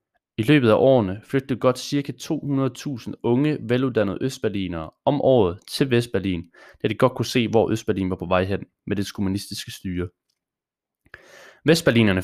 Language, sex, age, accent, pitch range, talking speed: English, male, 20-39, Danish, 105-130 Hz, 150 wpm